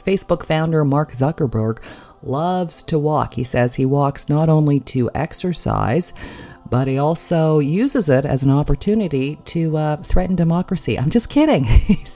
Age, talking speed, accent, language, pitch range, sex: 40-59, 155 wpm, American, English, 125-170 Hz, female